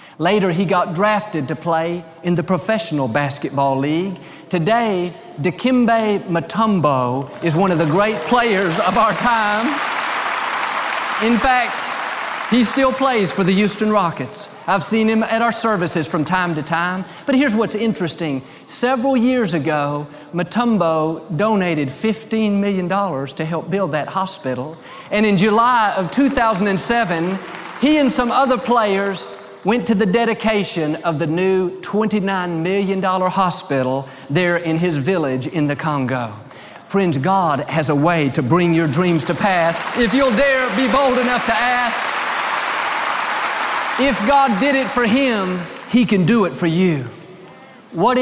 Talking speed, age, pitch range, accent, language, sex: 145 wpm, 40-59, 165-220 Hz, American, English, male